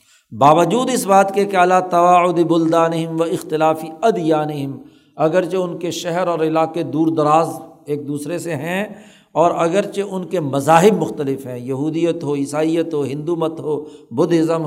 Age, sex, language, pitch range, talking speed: 60-79, male, Urdu, 155-200 Hz, 155 wpm